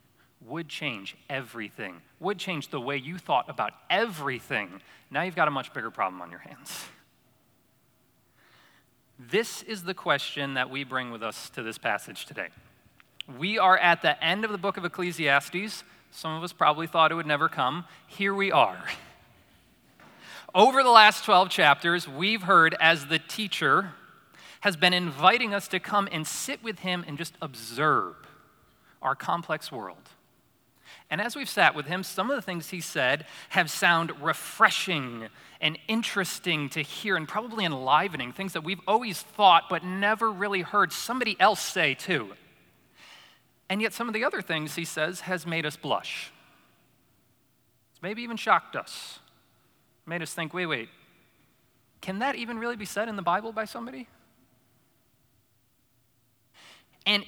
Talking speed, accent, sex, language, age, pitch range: 160 wpm, American, male, English, 30-49, 140-195 Hz